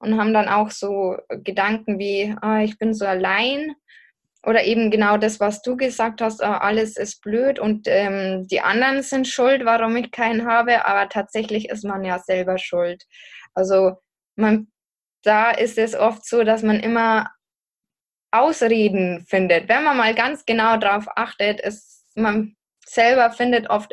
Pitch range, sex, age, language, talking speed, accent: 210-245 Hz, female, 10-29, German, 160 wpm, German